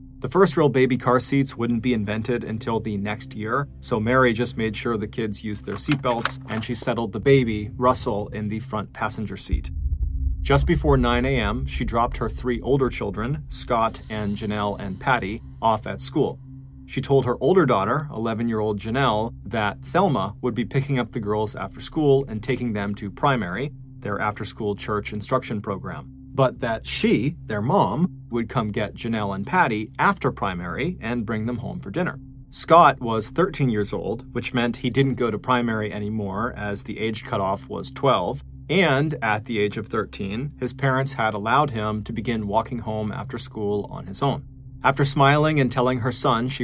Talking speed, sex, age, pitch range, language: 185 wpm, male, 30-49, 105-130 Hz, English